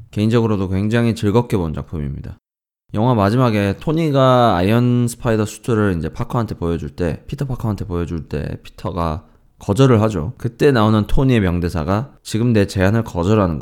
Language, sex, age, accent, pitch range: Korean, male, 20-39, native, 90-120 Hz